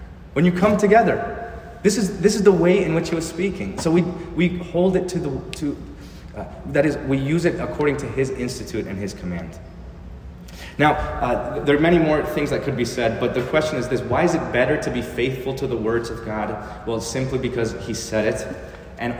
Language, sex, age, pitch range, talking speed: English, male, 30-49, 105-140 Hz, 220 wpm